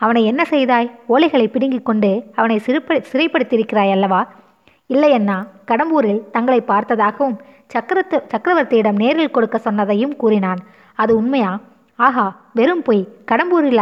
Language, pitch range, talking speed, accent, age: Tamil, 205-260 Hz, 115 wpm, native, 20-39